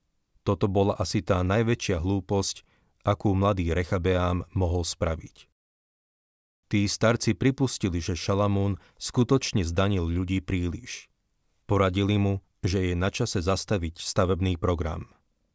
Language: Slovak